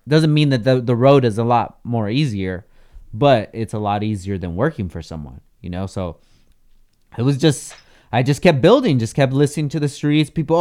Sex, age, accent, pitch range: male, 30-49, American, 105-140 Hz